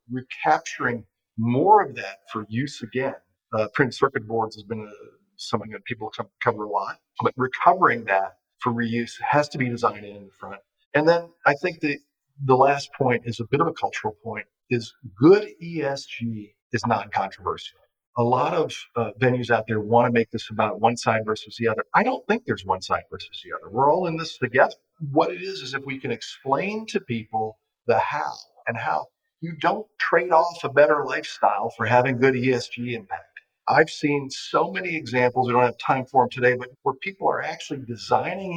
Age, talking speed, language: 40-59, 200 wpm, English